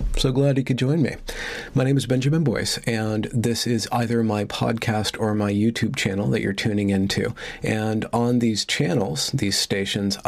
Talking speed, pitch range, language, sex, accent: 180 wpm, 110-125 Hz, English, male, American